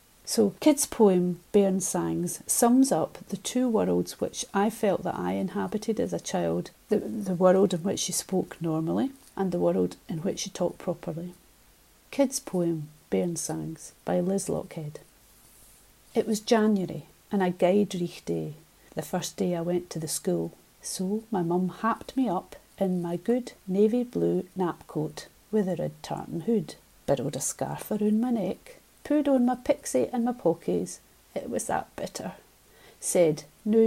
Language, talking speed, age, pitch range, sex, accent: English, 165 wpm, 40-59, 170-225 Hz, female, British